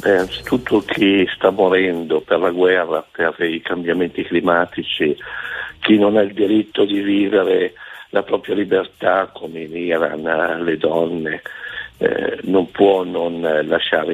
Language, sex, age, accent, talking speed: Italian, male, 50-69, native, 135 wpm